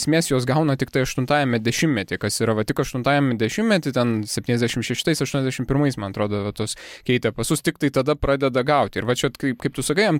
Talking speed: 180 wpm